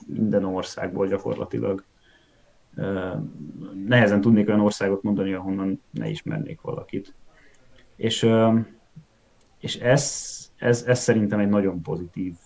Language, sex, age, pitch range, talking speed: Hungarian, male, 20-39, 100-115 Hz, 100 wpm